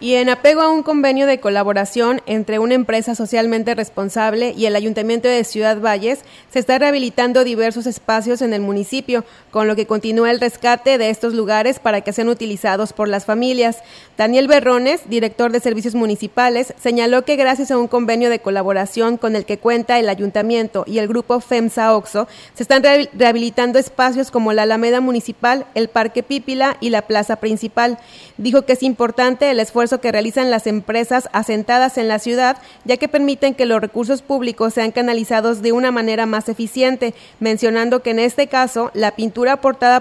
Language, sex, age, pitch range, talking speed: Spanish, female, 30-49, 220-250 Hz, 180 wpm